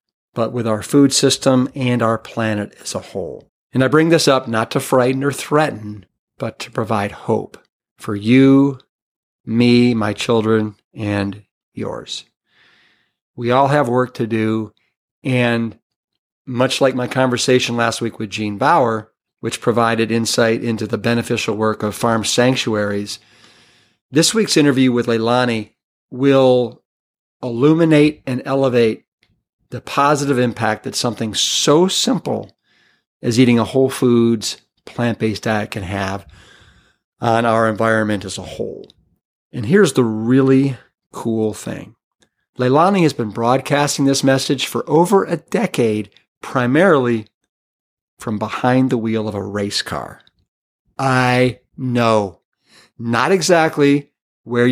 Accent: American